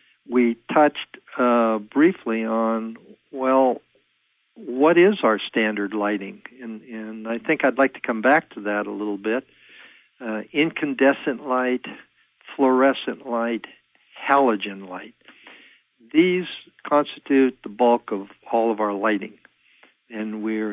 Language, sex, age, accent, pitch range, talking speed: English, male, 60-79, American, 110-135 Hz, 125 wpm